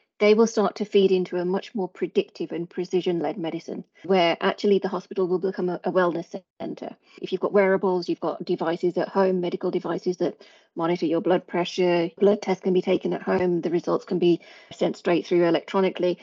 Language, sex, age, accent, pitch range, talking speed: English, female, 30-49, British, 175-195 Hz, 200 wpm